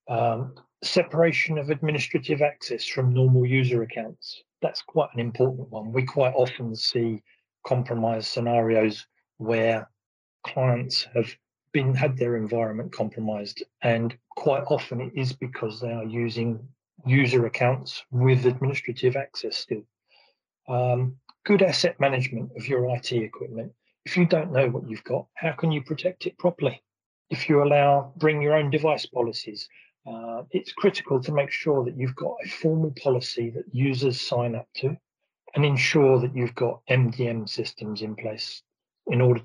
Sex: male